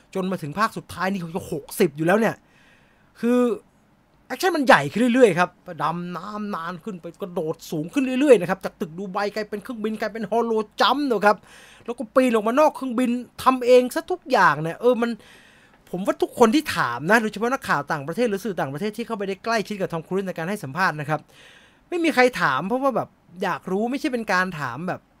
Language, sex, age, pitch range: English, male, 20-39, 185-250 Hz